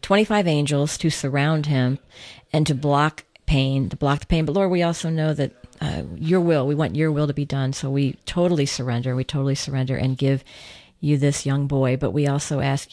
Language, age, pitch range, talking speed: English, 40-59, 130-155 Hz, 215 wpm